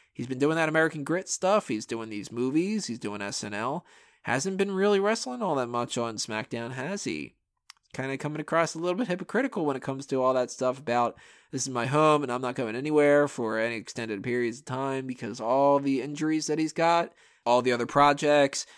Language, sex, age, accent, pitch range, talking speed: English, male, 20-39, American, 125-170 Hz, 215 wpm